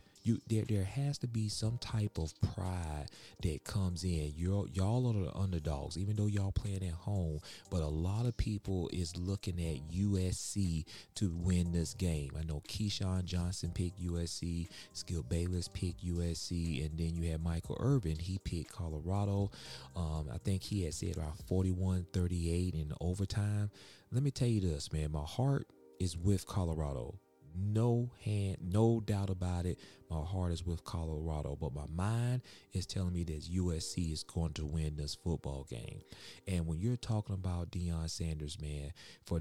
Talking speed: 170 wpm